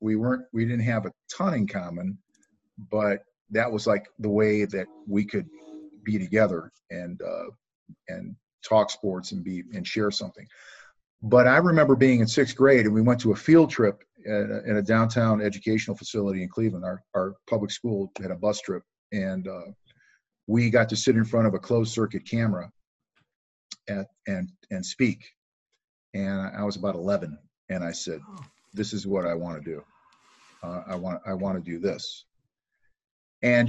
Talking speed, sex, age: 180 wpm, male, 50-69